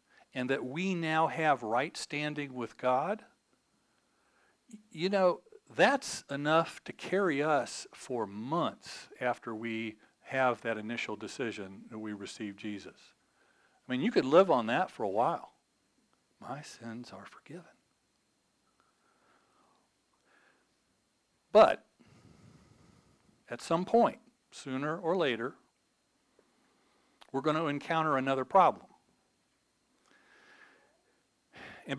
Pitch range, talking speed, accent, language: 125-190 Hz, 105 wpm, American, English